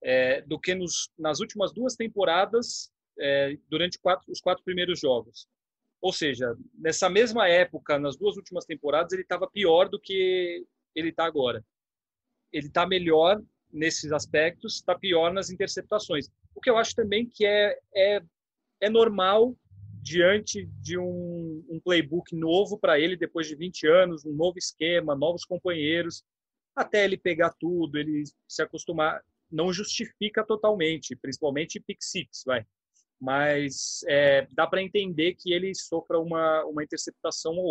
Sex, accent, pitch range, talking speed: male, Brazilian, 155-200 Hz, 150 wpm